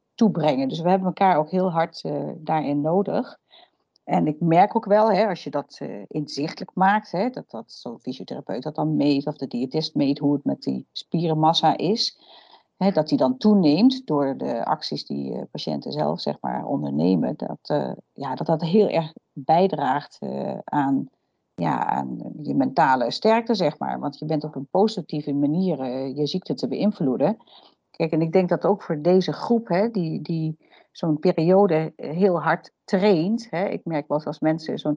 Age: 40-59